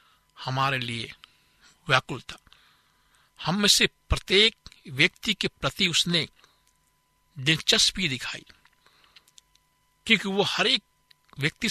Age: 60-79